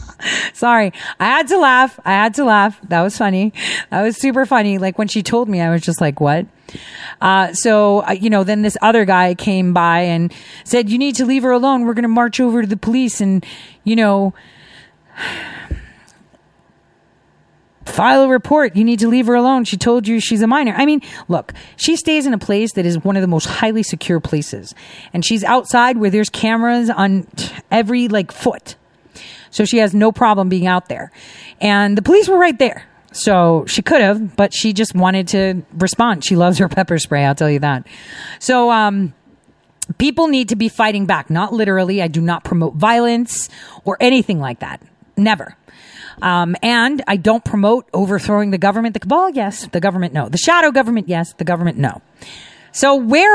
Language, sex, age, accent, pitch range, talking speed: English, female, 40-59, American, 185-240 Hz, 195 wpm